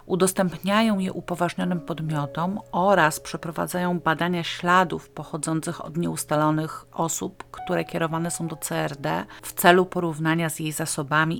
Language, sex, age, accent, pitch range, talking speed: Polish, female, 40-59, native, 155-190 Hz, 120 wpm